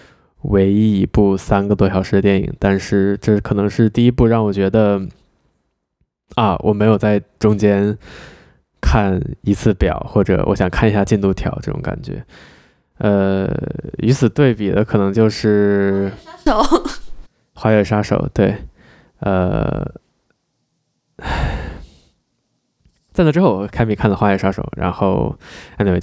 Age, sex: 20-39, male